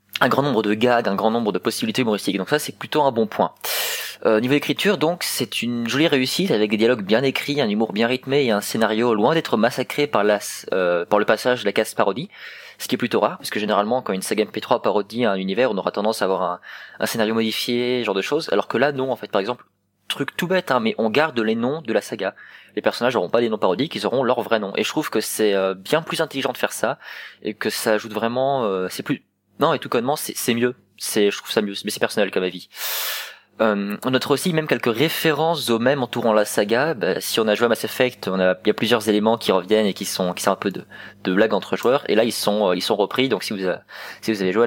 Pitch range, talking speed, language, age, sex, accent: 105-135 Hz, 275 wpm, French, 20-39, male, French